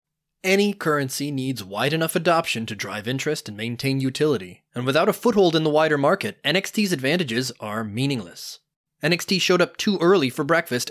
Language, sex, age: English, male, 20-39